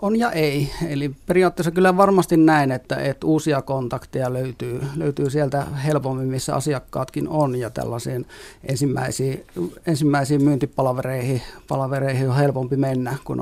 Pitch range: 130-155 Hz